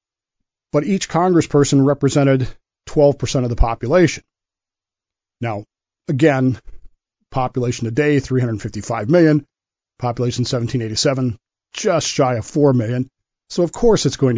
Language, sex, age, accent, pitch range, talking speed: English, male, 40-59, American, 115-150 Hz, 110 wpm